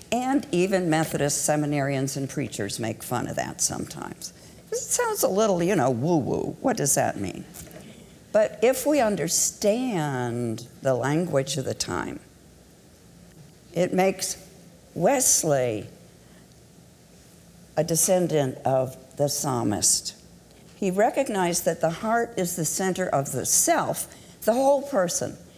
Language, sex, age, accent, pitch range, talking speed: English, female, 60-79, American, 135-190 Hz, 125 wpm